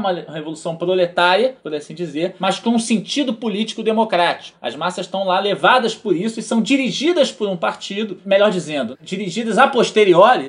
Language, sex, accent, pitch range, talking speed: Portuguese, male, Brazilian, 155-215 Hz, 170 wpm